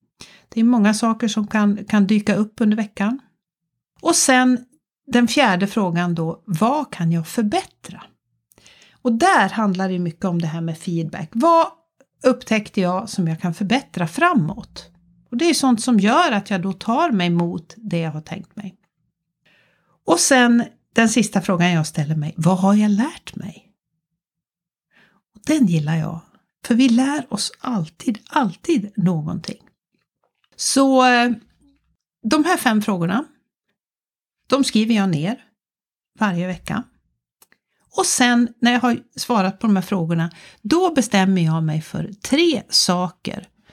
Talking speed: 150 wpm